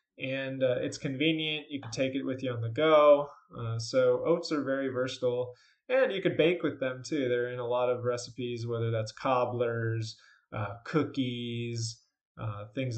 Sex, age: male, 20-39